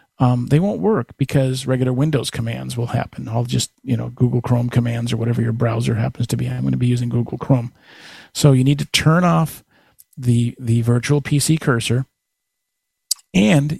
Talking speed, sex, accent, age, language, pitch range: 185 wpm, male, American, 50-69, English, 120-145 Hz